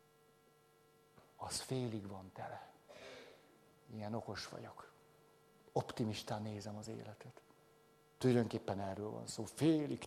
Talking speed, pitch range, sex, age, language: 95 wpm, 110-150 Hz, male, 60-79, Hungarian